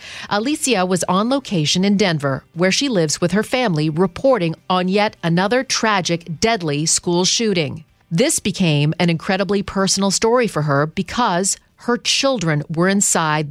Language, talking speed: English, 145 wpm